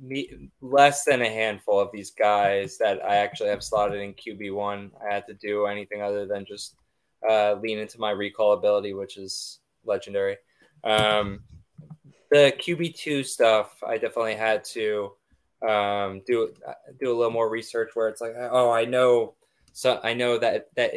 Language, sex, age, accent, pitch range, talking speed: English, male, 20-39, American, 105-130 Hz, 170 wpm